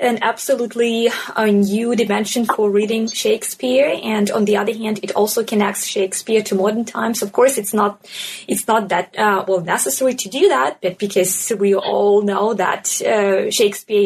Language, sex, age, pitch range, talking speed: English, female, 20-39, 200-235 Hz, 170 wpm